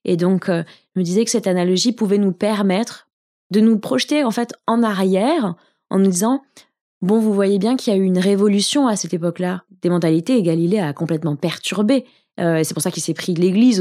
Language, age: French, 20-39